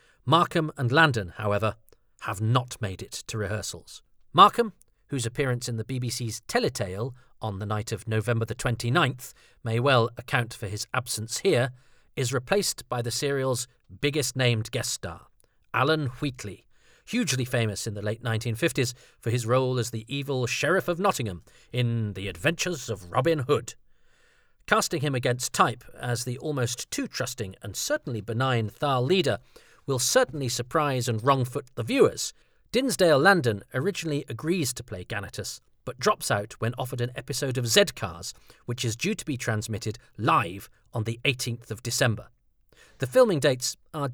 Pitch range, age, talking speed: 110-145 Hz, 40-59, 160 wpm